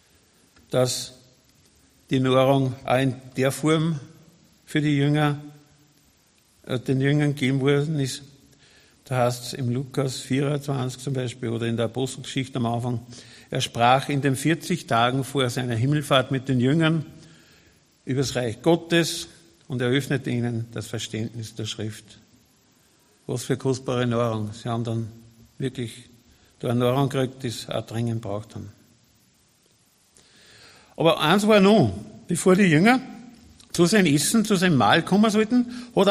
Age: 50-69